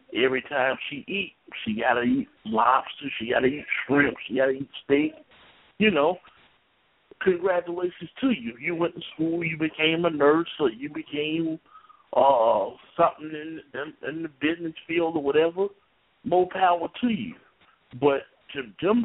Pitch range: 135-200 Hz